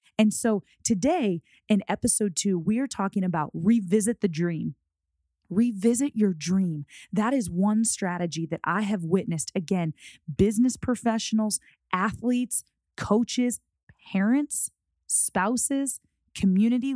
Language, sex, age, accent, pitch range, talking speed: English, female, 20-39, American, 180-235 Hz, 115 wpm